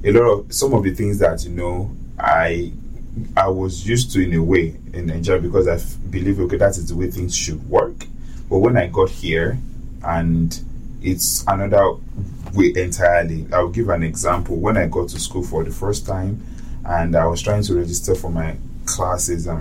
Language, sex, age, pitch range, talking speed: English, male, 20-39, 85-115 Hz, 200 wpm